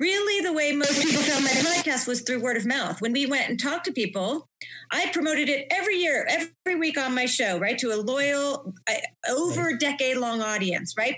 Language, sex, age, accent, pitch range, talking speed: English, female, 30-49, American, 205-285 Hz, 200 wpm